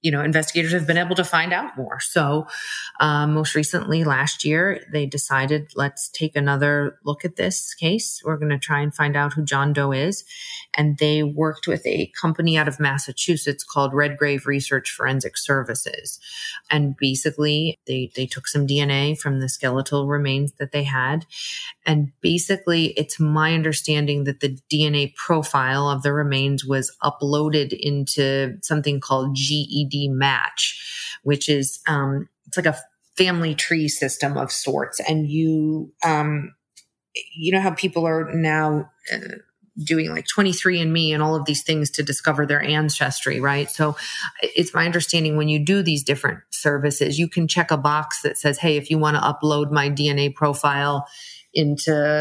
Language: English